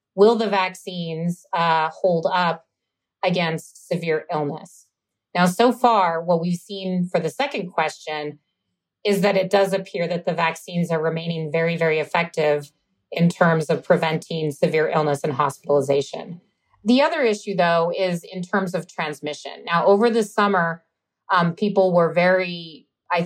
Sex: female